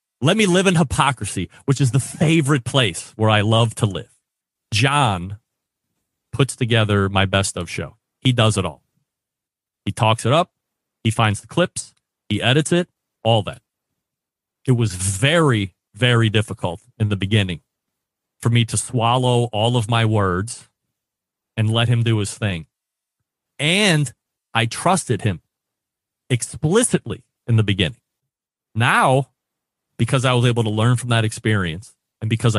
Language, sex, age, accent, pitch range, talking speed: English, male, 30-49, American, 105-125 Hz, 150 wpm